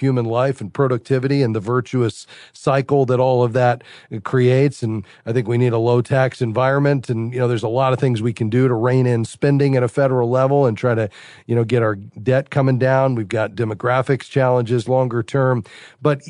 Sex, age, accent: male, 40-59, American